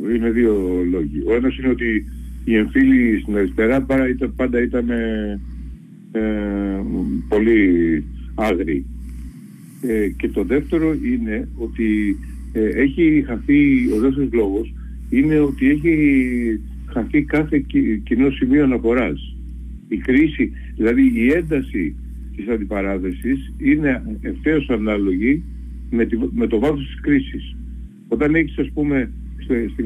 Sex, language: male, Greek